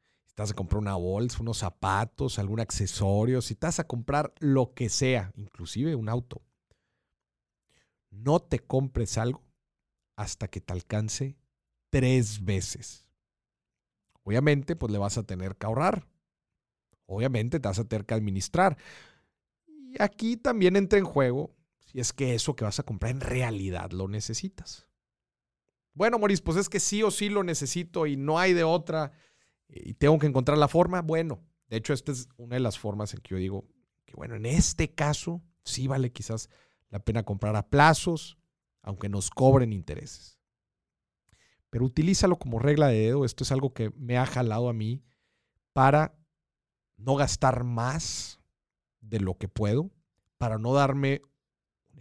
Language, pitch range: Spanish, 105-150 Hz